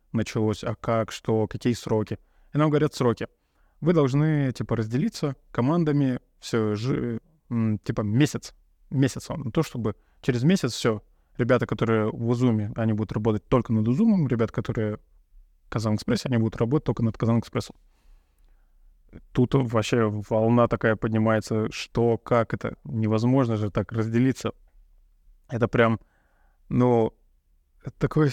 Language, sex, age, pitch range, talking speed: Russian, male, 20-39, 110-125 Hz, 135 wpm